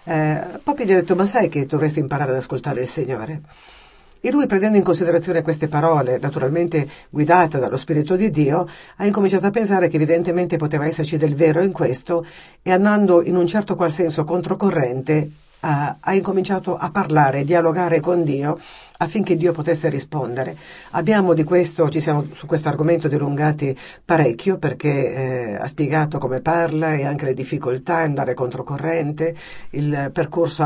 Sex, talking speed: female, 160 wpm